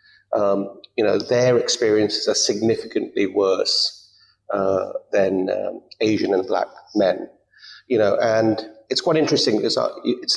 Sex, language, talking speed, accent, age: male, English, 125 wpm, British, 40-59